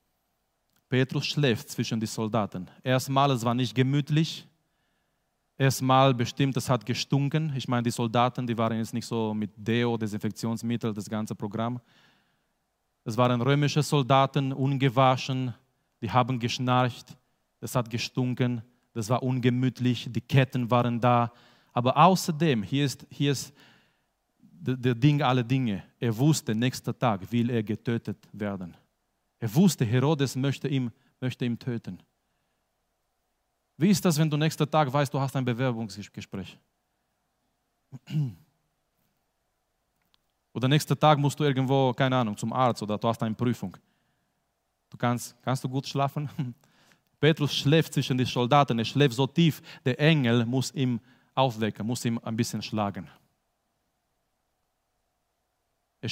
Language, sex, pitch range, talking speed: German, male, 120-140 Hz, 135 wpm